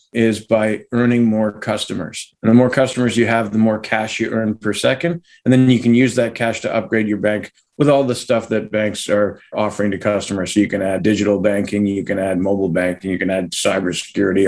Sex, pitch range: male, 105-125 Hz